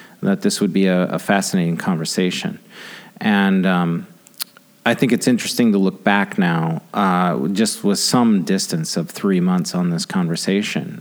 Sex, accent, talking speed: male, American, 160 wpm